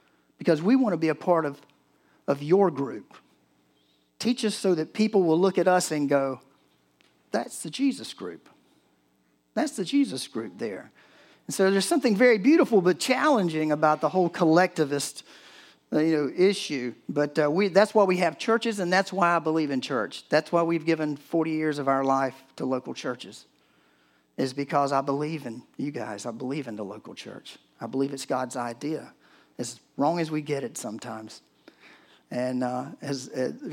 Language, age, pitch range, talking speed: English, 50-69, 130-170 Hz, 180 wpm